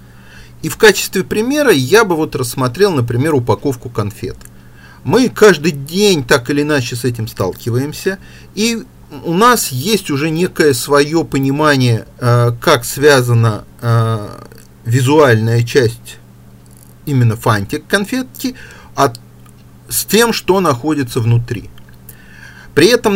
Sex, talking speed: male, 115 wpm